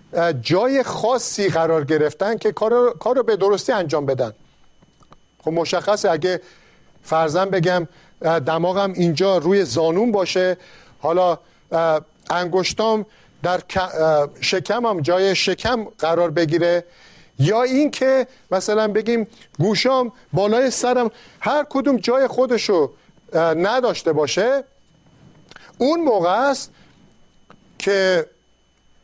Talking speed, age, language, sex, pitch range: 95 wpm, 50-69, Persian, male, 165-235 Hz